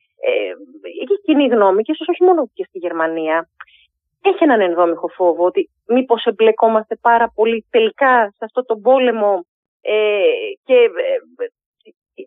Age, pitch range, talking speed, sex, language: 30-49, 190-260 Hz, 125 wpm, female, Greek